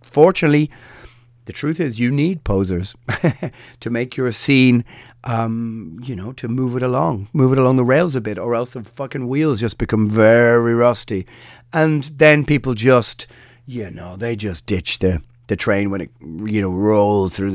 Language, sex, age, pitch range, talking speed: English, male, 30-49, 105-135 Hz, 180 wpm